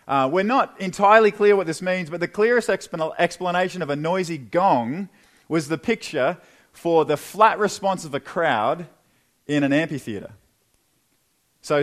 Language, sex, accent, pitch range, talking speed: English, male, Australian, 160-210 Hz, 150 wpm